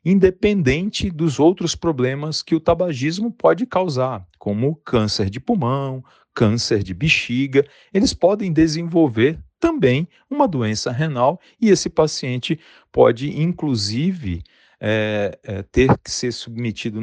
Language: Portuguese